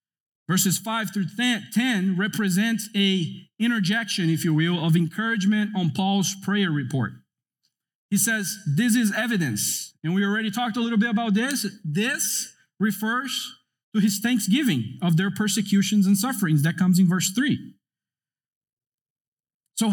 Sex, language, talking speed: male, English, 135 wpm